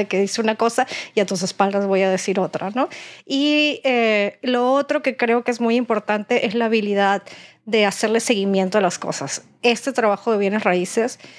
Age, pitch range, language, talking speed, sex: 30-49, 205-240 Hz, Spanish, 195 wpm, female